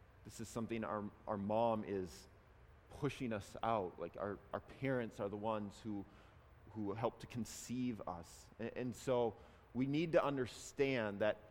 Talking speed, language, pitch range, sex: 160 wpm, English, 110-170 Hz, male